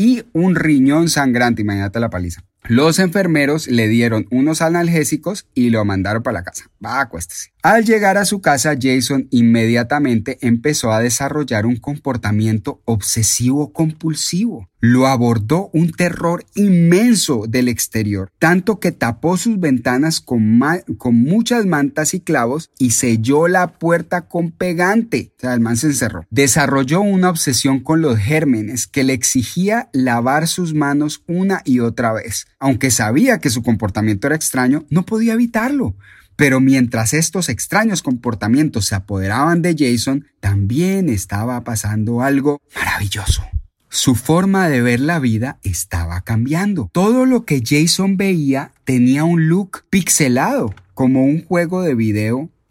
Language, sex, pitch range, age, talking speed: Spanish, male, 115-170 Hz, 30-49, 145 wpm